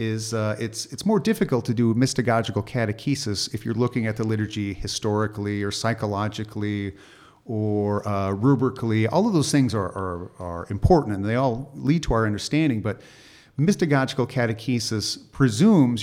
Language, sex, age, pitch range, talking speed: English, male, 40-59, 105-130 Hz, 155 wpm